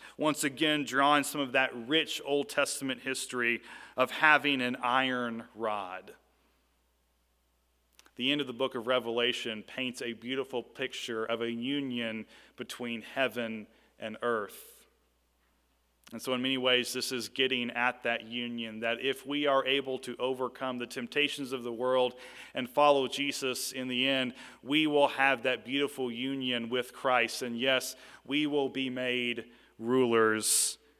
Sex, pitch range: male, 115-140 Hz